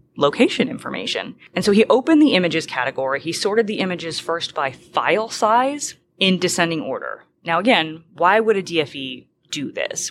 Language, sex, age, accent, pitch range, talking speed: English, female, 30-49, American, 155-205 Hz, 165 wpm